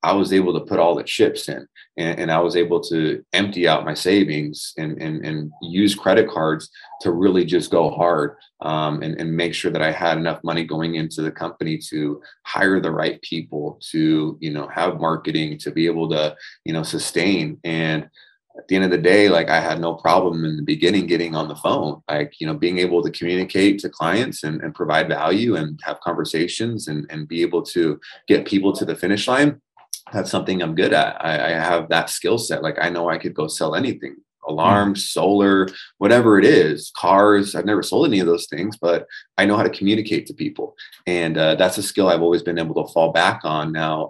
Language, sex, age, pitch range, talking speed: English, male, 30-49, 80-95 Hz, 220 wpm